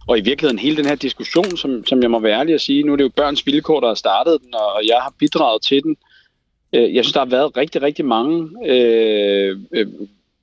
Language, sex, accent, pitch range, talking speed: Danish, male, native, 115-160 Hz, 230 wpm